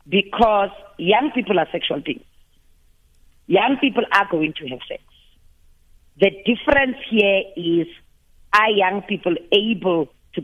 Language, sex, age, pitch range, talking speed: English, female, 40-59, 155-210 Hz, 125 wpm